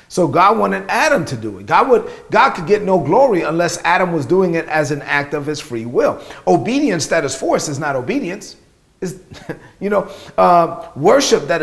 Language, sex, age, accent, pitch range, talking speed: English, male, 40-59, American, 150-195 Hz, 200 wpm